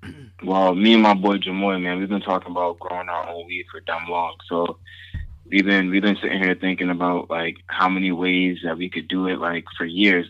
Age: 20-39